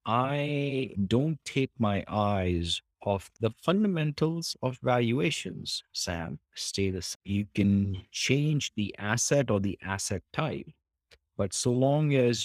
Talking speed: 120 wpm